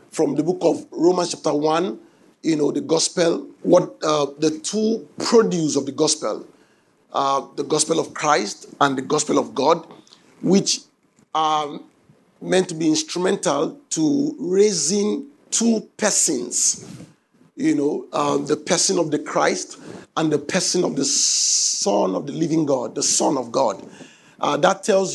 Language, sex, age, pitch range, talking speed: English, male, 50-69, 170-220 Hz, 155 wpm